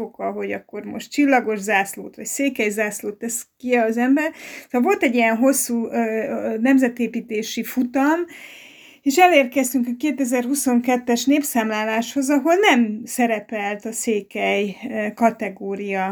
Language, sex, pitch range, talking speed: Hungarian, female, 210-255 Hz, 110 wpm